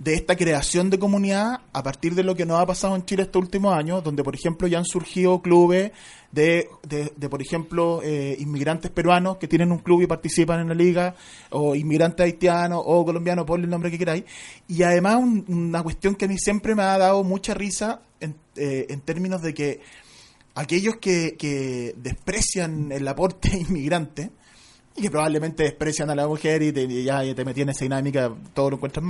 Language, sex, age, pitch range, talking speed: Spanish, male, 20-39, 155-190 Hz, 205 wpm